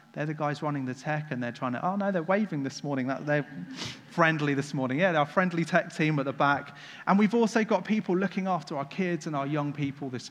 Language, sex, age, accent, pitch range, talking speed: English, male, 30-49, British, 140-185 Hz, 250 wpm